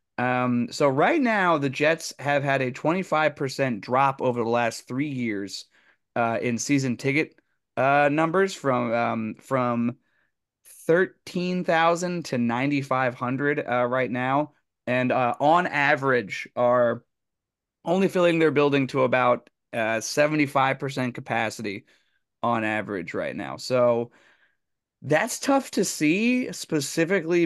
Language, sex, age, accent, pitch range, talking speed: English, male, 20-39, American, 120-155 Hz, 120 wpm